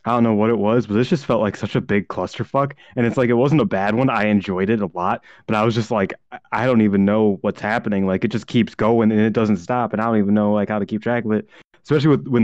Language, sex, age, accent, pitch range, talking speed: English, male, 20-39, American, 105-125 Hz, 305 wpm